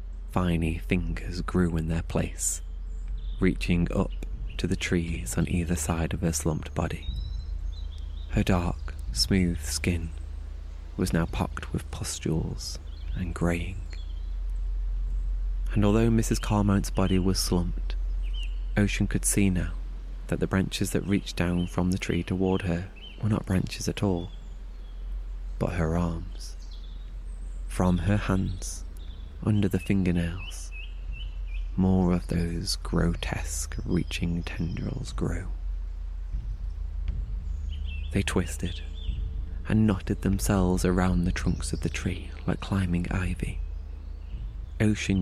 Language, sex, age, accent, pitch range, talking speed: English, male, 20-39, British, 75-90 Hz, 115 wpm